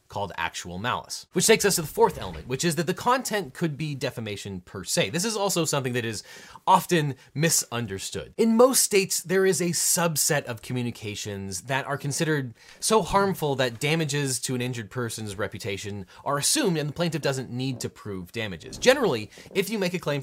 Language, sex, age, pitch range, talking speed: English, male, 30-49, 115-165 Hz, 195 wpm